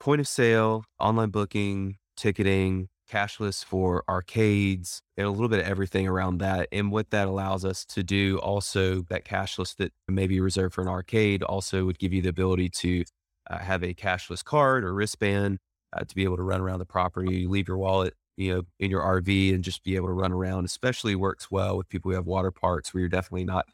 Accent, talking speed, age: American, 215 wpm, 30-49